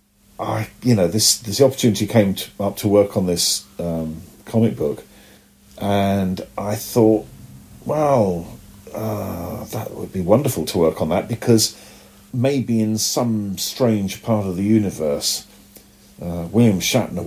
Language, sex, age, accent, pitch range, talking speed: English, male, 40-59, British, 90-110 Hz, 145 wpm